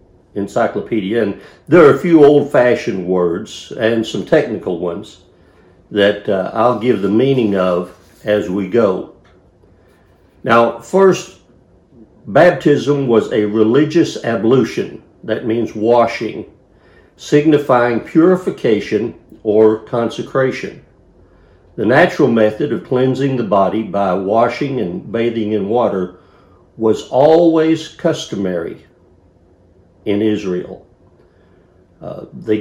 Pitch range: 95-130 Hz